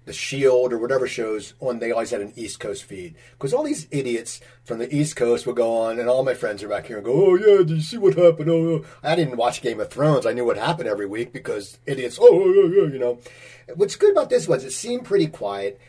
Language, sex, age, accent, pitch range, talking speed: English, male, 40-59, American, 120-190 Hz, 265 wpm